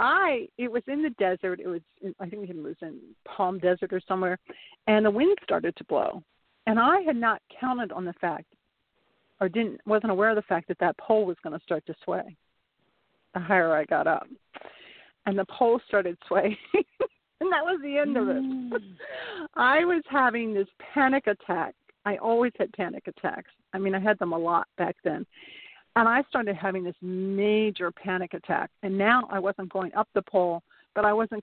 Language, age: English, 50-69